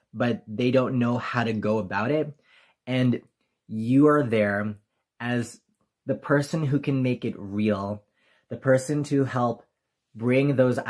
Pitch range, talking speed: 110-135 Hz, 150 wpm